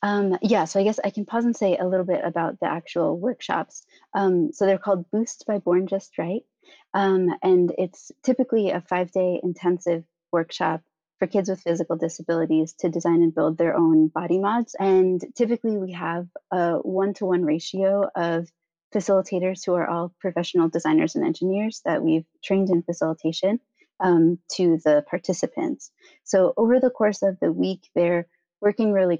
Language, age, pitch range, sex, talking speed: English, 20-39, 170-200 Hz, female, 170 wpm